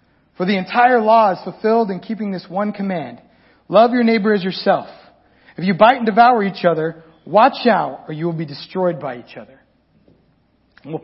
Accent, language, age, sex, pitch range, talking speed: American, English, 40-59, male, 200-280 Hz, 185 wpm